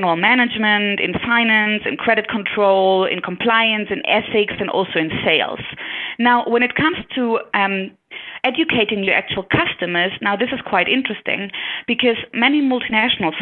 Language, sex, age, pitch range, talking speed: English, female, 30-49, 195-240 Hz, 145 wpm